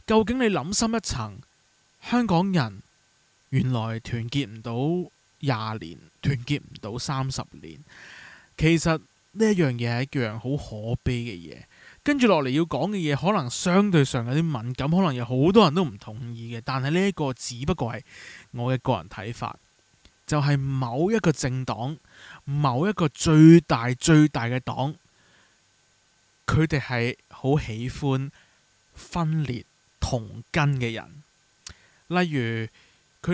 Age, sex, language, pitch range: 20-39, male, Chinese, 120-160 Hz